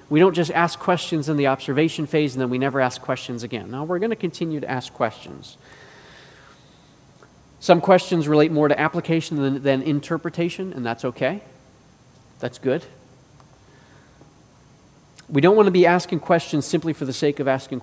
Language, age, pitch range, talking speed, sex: English, 30-49, 130-160 Hz, 170 wpm, male